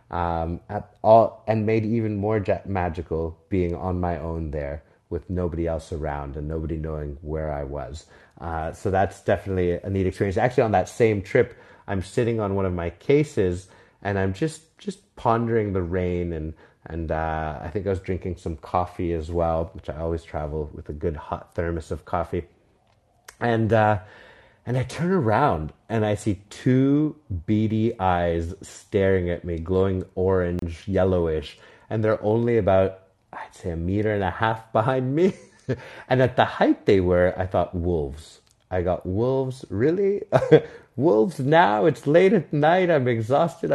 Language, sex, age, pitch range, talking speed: English, male, 30-49, 85-115 Hz, 170 wpm